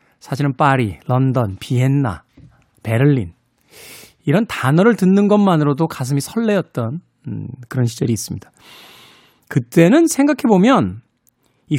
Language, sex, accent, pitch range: Korean, male, native, 130-210 Hz